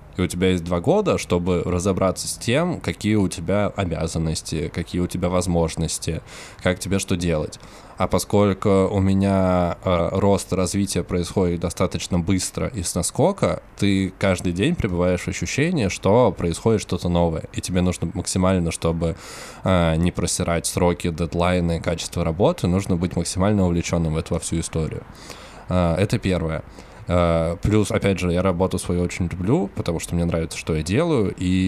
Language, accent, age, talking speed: Russian, native, 20-39, 160 wpm